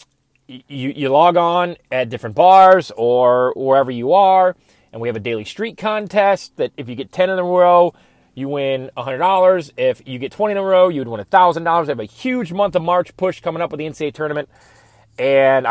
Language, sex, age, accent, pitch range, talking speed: English, male, 30-49, American, 115-165 Hz, 205 wpm